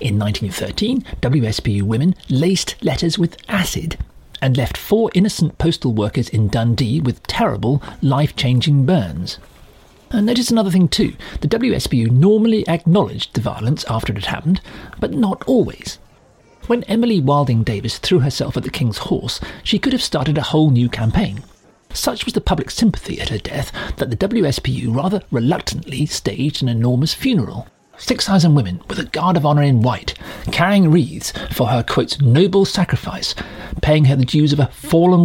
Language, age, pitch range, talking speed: English, 50-69, 120-185 Hz, 165 wpm